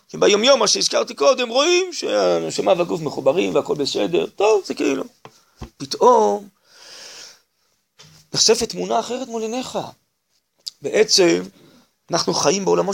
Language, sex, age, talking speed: Hebrew, male, 30-49, 110 wpm